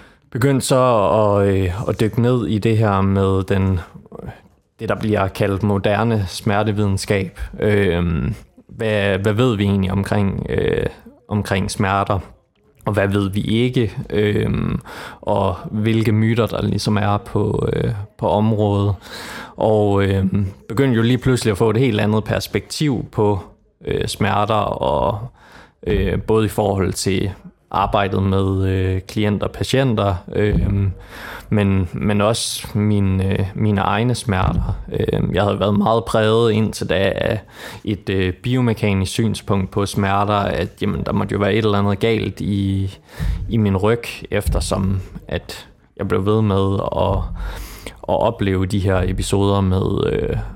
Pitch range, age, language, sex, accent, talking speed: 95-110 Hz, 20-39, Danish, male, native, 145 wpm